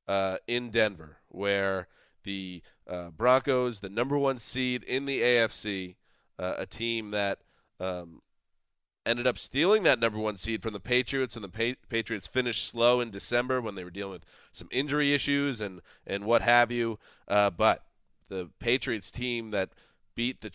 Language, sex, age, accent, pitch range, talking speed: English, male, 30-49, American, 95-120 Hz, 165 wpm